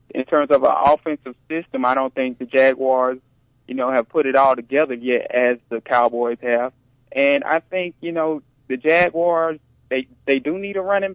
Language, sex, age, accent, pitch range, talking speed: English, male, 20-39, American, 120-140 Hz, 195 wpm